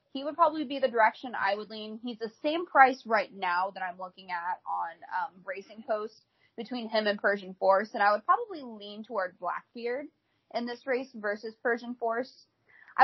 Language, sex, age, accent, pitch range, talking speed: English, female, 20-39, American, 190-255 Hz, 195 wpm